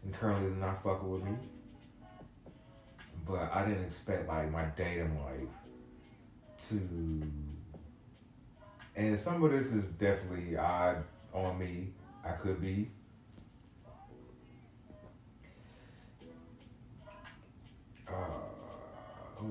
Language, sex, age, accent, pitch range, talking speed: English, male, 30-49, American, 80-120 Hz, 90 wpm